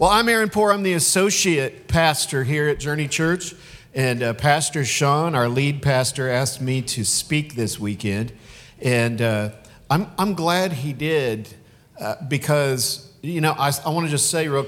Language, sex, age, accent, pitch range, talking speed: English, male, 50-69, American, 120-155 Hz, 175 wpm